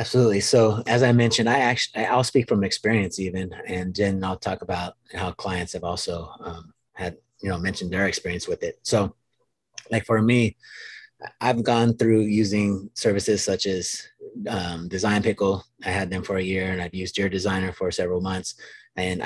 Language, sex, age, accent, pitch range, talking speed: English, male, 30-49, American, 95-115 Hz, 185 wpm